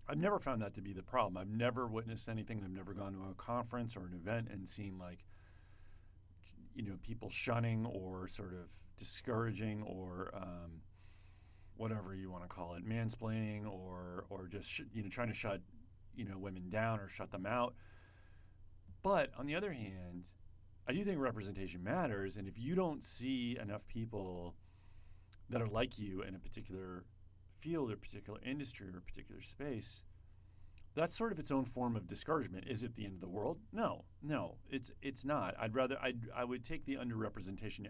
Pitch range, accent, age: 90-110 Hz, American, 40-59